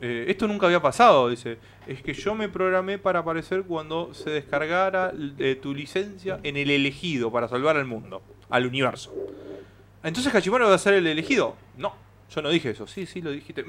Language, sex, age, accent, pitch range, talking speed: Spanish, male, 30-49, Argentinian, 115-185 Hz, 195 wpm